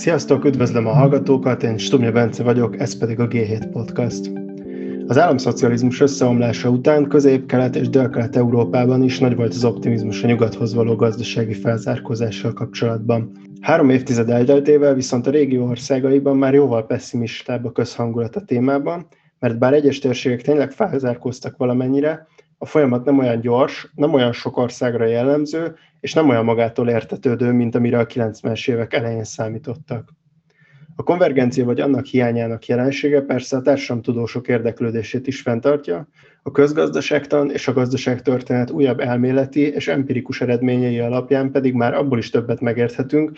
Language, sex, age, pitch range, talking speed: Hungarian, male, 20-39, 120-140 Hz, 145 wpm